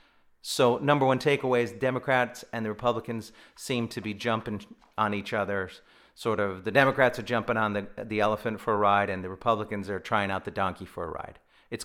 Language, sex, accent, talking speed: English, male, American, 210 wpm